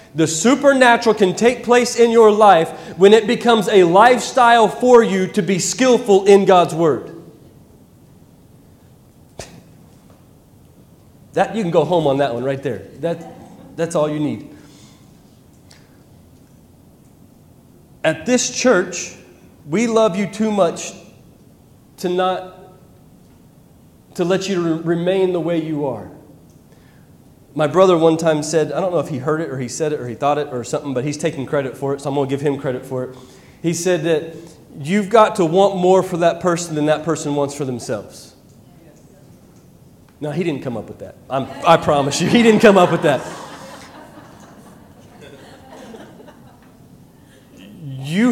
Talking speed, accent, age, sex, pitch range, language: 160 wpm, American, 30-49, male, 150-205 Hz, English